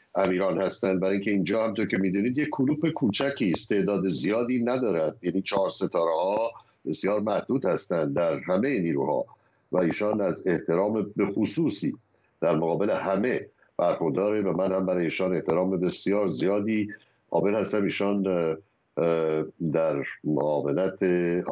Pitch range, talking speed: 90-120 Hz, 135 wpm